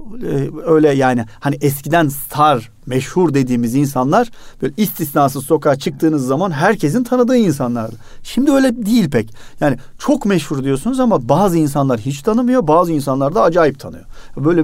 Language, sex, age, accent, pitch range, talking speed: Turkish, male, 40-59, native, 130-195 Hz, 145 wpm